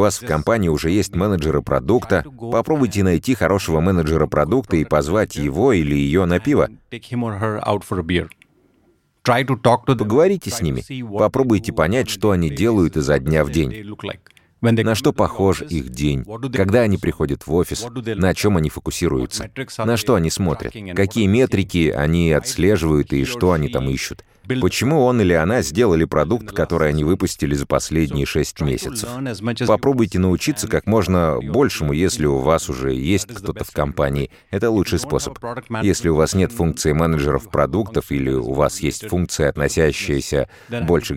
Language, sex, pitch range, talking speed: Russian, male, 75-110 Hz, 150 wpm